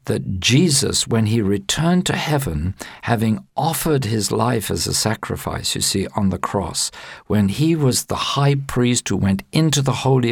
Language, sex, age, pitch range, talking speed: English, male, 50-69, 105-140 Hz, 175 wpm